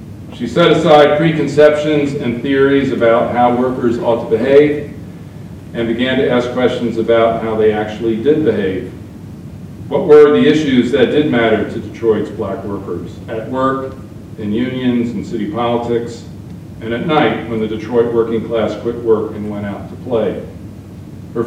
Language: English